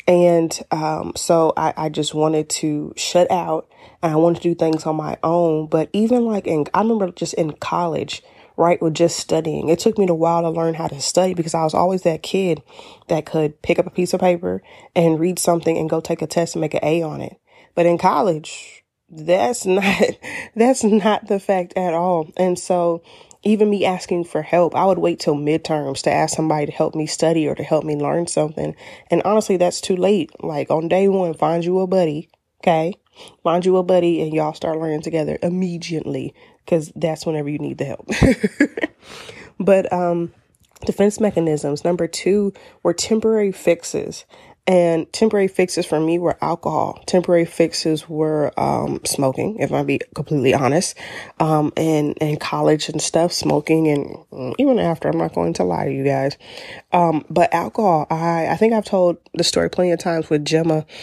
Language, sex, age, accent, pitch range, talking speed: English, female, 20-39, American, 155-180 Hz, 195 wpm